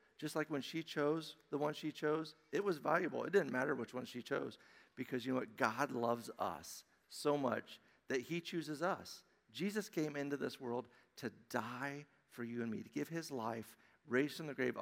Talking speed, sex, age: 205 wpm, male, 50-69